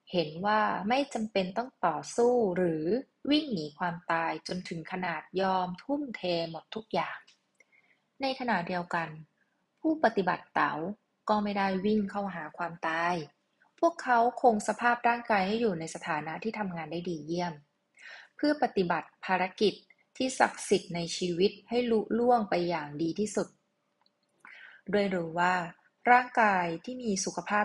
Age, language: 20-39, Thai